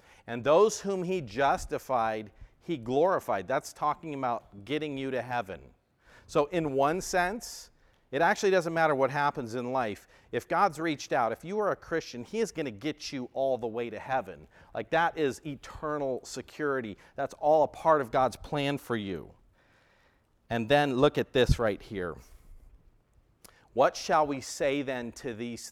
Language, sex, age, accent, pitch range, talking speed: English, male, 40-59, American, 120-165 Hz, 175 wpm